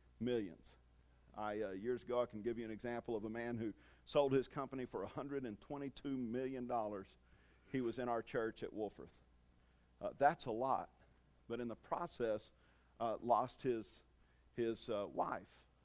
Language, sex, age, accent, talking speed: English, male, 50-69, American, 165 wpm